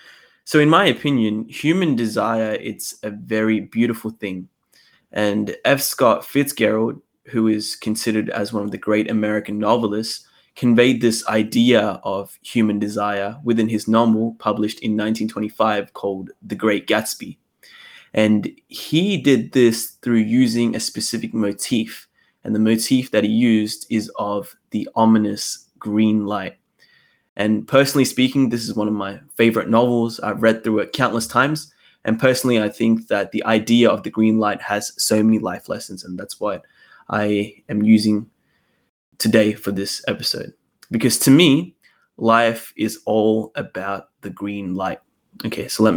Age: 20-39